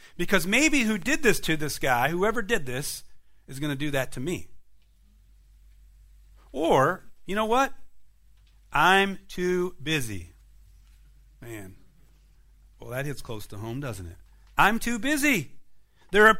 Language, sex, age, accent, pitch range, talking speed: English, male, 40-59, American, 125-195 Hz, 145 wpm